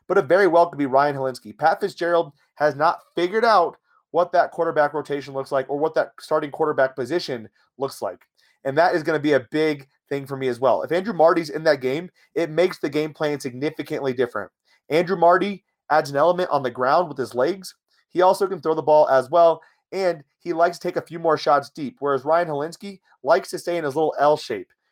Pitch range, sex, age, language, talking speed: 145-180 Hz, male, 30-49, English, 225 wpm